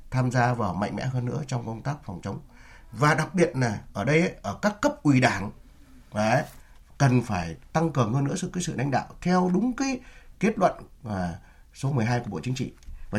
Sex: male